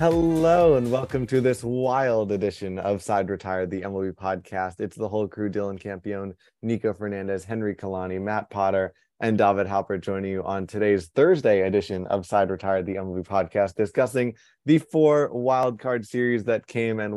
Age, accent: 20-39, American